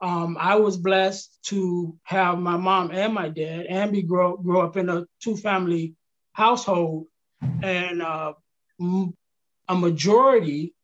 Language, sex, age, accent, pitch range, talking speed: English, male, 20-39, American, 175-210 Hz, 145 wpm